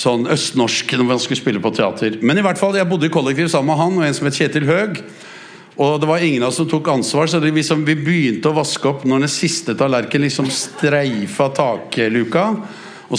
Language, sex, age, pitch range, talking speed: English, male, 60-79, 120-160 Hz, 230 wpm